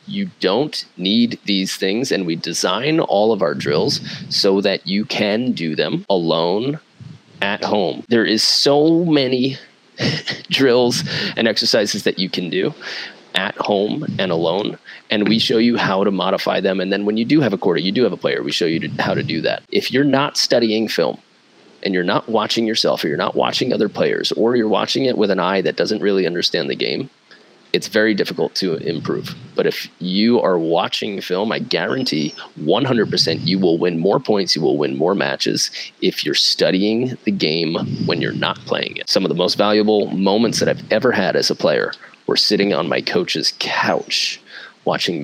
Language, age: English, 30-49